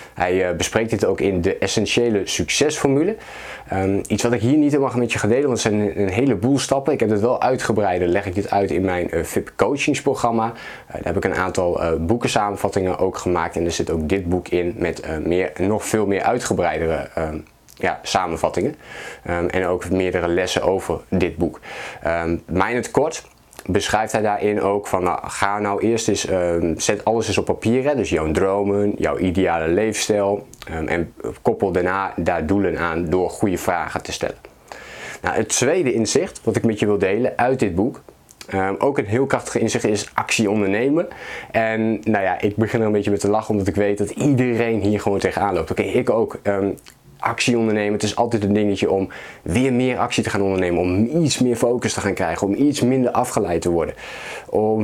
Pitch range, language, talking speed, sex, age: 95-120 Hz, Dutch, 195 wpm, male, 20-39